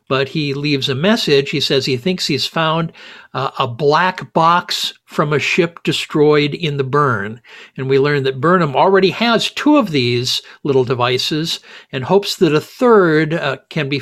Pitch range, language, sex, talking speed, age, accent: 135-170 Hz, English, male, 180 wpm, 60-79, American